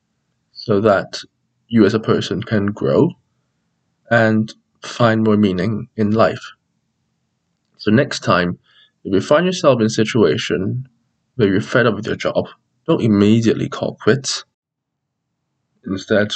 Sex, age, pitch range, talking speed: male, 20-39, 110-130 Hz, 130 wpm